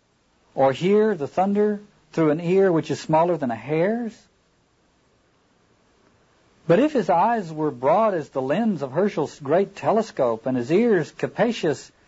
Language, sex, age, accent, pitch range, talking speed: English, male, 60-79, American, 140-200 Hz, 150 wpm